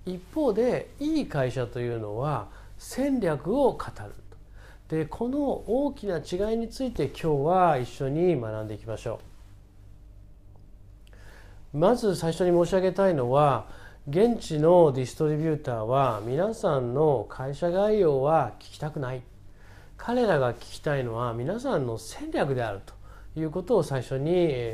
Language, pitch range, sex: Japanese, 110-160 Hz, male